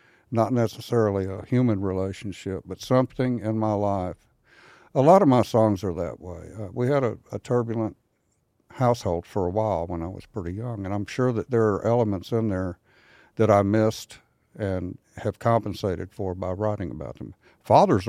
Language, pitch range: English, 100-120 Hz